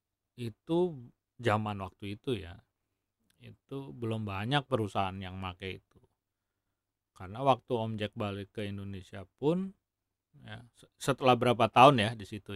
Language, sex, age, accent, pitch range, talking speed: Indonesian, male, 40-59, native, 100-125 Hz, 125 wpm